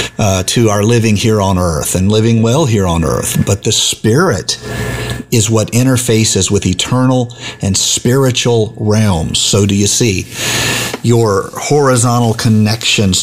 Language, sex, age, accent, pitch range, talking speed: English, male, 50-69, American, 100-120 Hz, 140 wpm